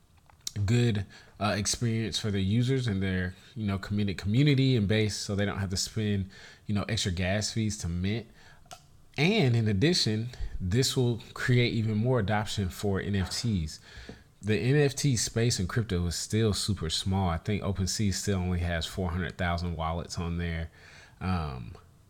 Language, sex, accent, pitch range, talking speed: English, male, American, 90-105 Hz, 165 wpm